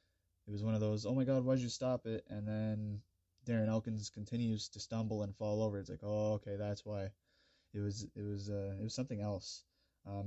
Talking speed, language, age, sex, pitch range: 215 wpm, English, 20-39, male, 95-110 Hz